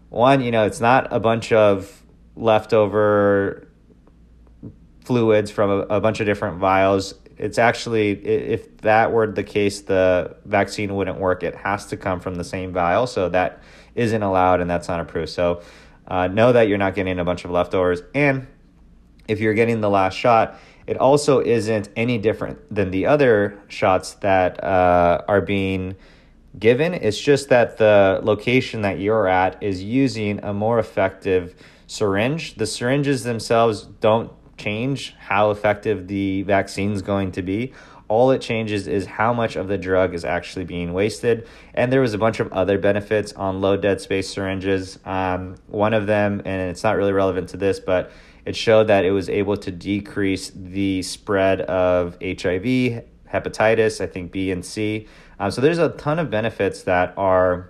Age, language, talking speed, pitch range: 30-49, English, 175 wpm, 95-110 Hz